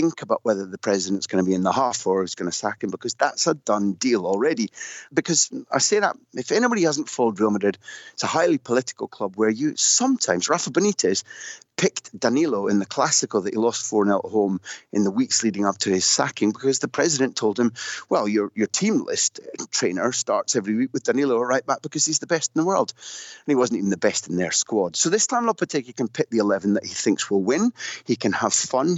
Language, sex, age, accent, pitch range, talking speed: English, male, 30-49, British, 100-155 Hz, 235 wpm